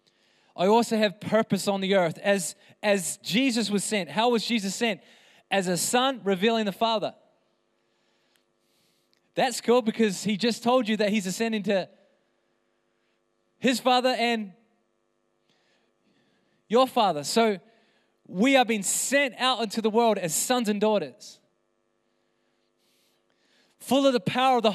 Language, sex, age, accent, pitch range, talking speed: English, male, 20-39, Australian, 170-250 Hz, 140 wpm